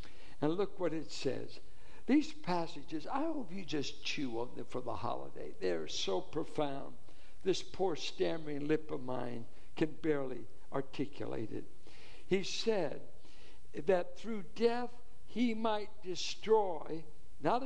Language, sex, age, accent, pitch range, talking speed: English, male, 60-79, American, 165-220 Hz, 135 wpm